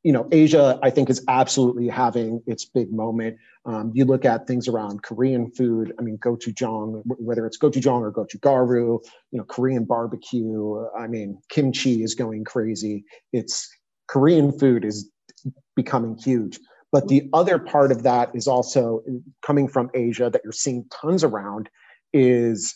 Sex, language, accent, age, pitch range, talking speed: male, English, American, 30-49, 115-130 Hz, 160 wpm